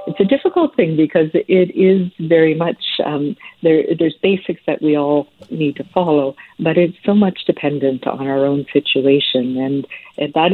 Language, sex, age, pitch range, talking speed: English, female, 60-79, 140-175 Hz, 175 wpm